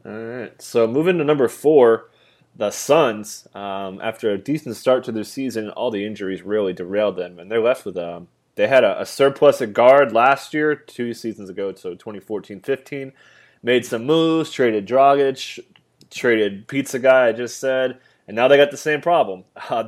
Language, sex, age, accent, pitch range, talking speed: English, male, 20-39, American, 100-130 Hz, 190 wpm